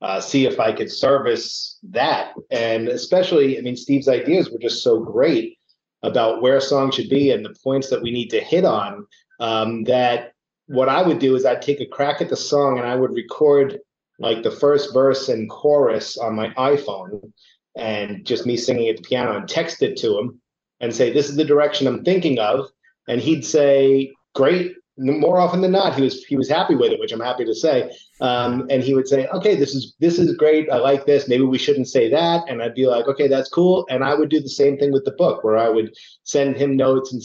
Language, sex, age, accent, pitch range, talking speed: English, male, 30-49, American, 130-175 Hz, 230 wpm